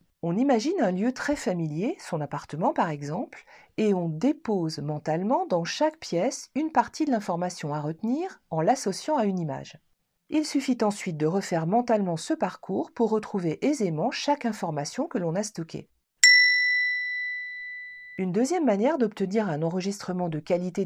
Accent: French